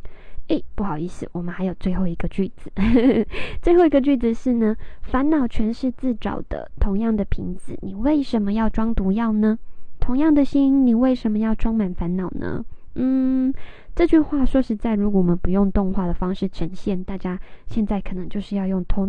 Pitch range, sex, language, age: 195-250 Hz, female, Chinese, 20-39